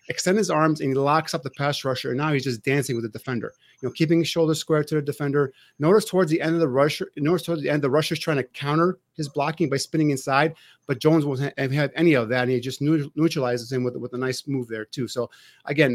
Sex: male